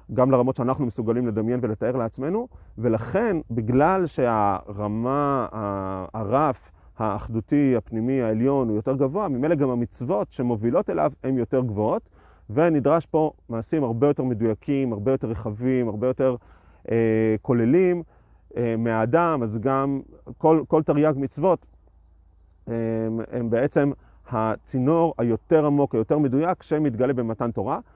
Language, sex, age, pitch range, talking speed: Hebrew, male, 30-49, 115-145 Hz, 125 wpm